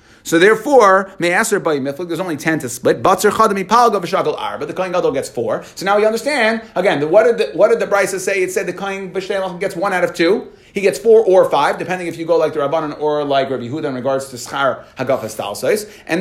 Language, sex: English, male